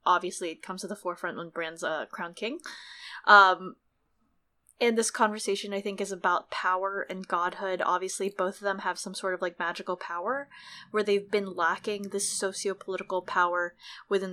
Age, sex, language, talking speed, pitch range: 20-39, female, English, 170 wpm, 180-210 Hz